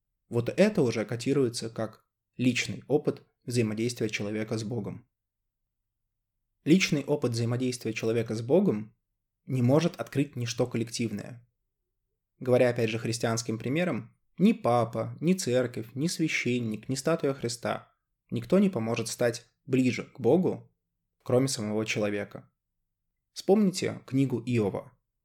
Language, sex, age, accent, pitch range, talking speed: Russian, male, 20-39, native, 110-130 Hz, 115 wpm